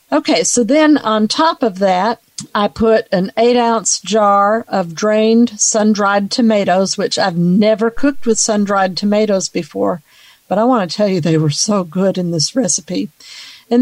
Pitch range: 195-230 Hz